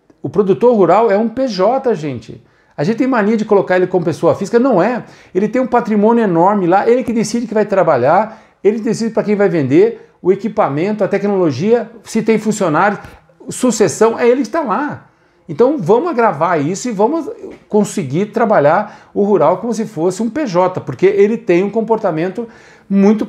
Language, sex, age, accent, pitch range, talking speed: Portuguese, male, 50-69, Brazilian, 180-220 Hz, 185 wpm